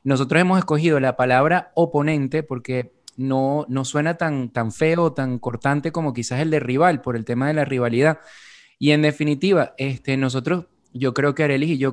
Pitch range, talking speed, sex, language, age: 130-160 Hz, 185 wpm, male, Spanish, 20-39